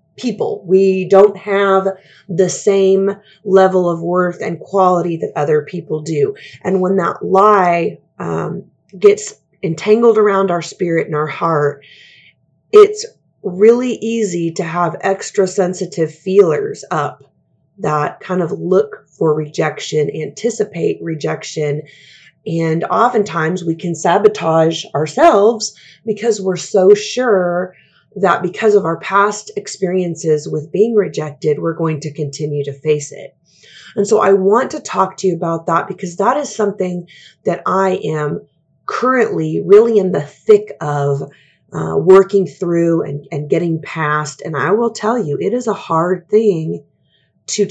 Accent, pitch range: American, 160-205 Hz